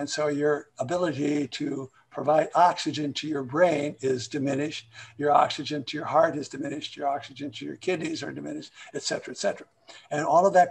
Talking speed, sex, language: 190 wpm, male, English